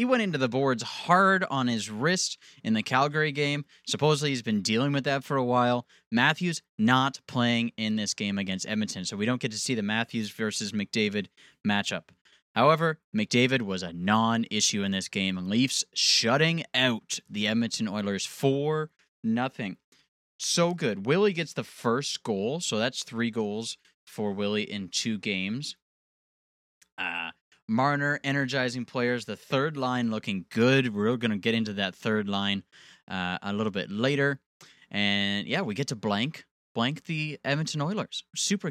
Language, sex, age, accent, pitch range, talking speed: English, male, 20-39, American, 105-150 Hz, 165 wpm